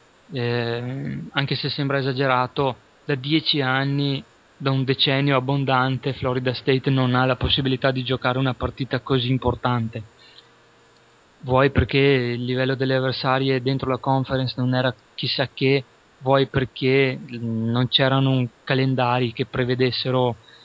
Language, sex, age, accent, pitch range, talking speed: Italian, male, 20-39, native, 120-135 Hz, 130 wpm